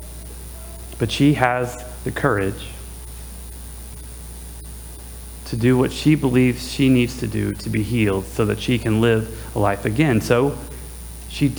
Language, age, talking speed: English, 30-49, 140 wpm